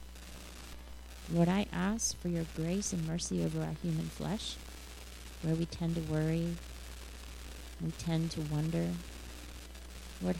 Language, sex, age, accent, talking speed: English, female, 30-49, American, 125 wpm